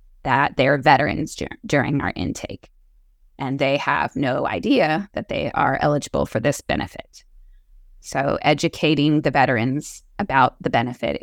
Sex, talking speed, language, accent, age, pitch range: female, 135 wpm, English, American, 20-39, 135-170 Hz